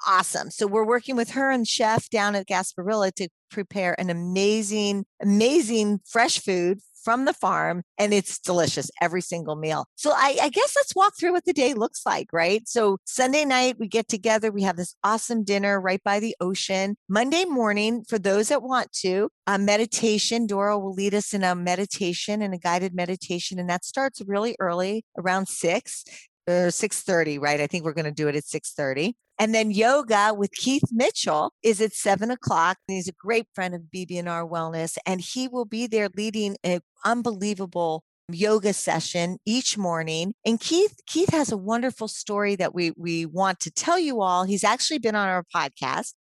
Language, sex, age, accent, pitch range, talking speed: English, female, 40-59, American, 175-225 Hz, 190 wpm